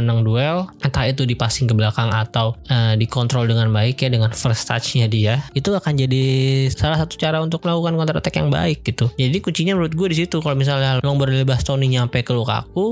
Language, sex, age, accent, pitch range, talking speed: Indonesian, male, 20-39, native, 115-145 Hz, 205 wpm